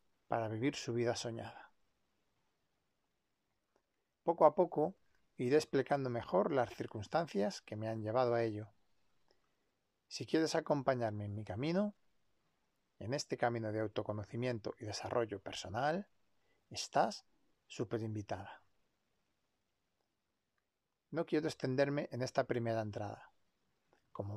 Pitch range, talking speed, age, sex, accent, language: 110-145 Hz, 110 wpm, 40-59, male, Spanish, Spanish